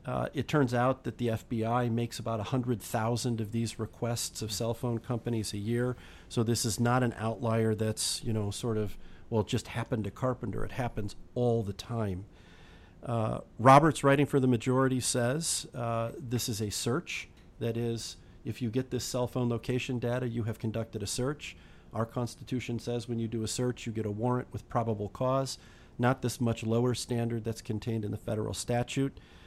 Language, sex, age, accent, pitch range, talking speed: English, male, 40-59, American, 110-125 Hz, 190 wpm